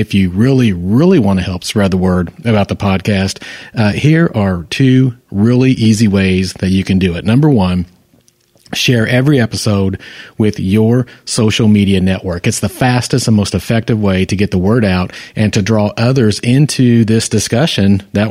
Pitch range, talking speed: 95-115 Hz, 180 wpm